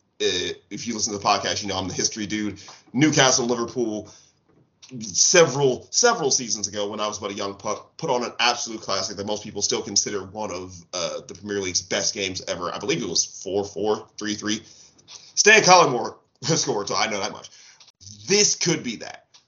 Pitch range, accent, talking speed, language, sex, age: 95-125 Hz, American, 195 wpm, English, male, 30-49